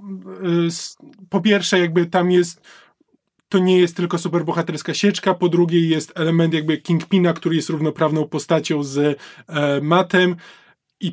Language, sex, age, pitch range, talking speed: Polish, male, 20-39, 165-190 Hz, 135 wpm